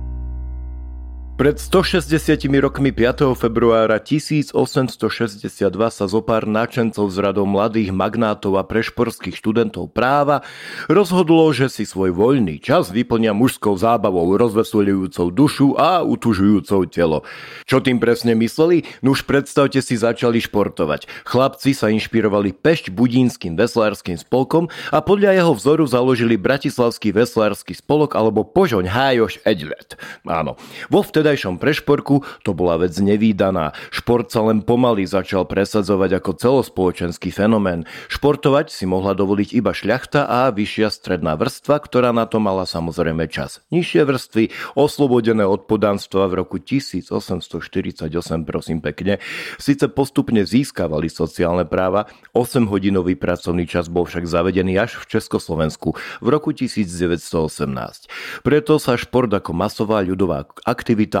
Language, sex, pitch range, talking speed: Slovak, male, 95-130 Hz, 120 wpm